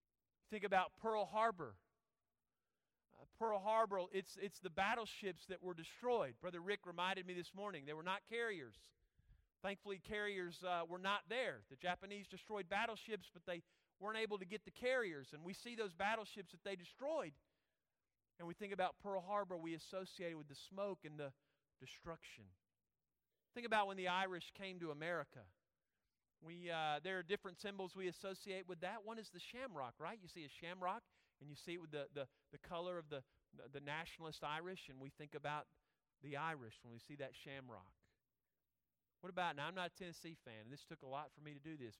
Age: 40-59